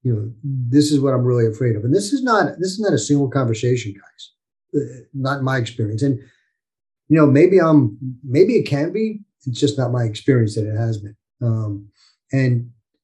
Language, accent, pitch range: English, American, 115-145 Hz